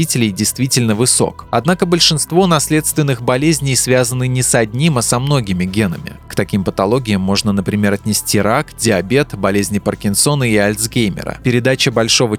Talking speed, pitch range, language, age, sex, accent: 135 wpm, 105-130 Hz, Russian, 20-39, male, native